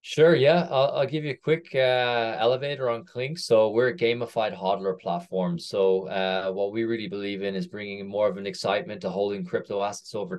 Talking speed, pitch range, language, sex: 210 wpm, 95-120 Hz, English, male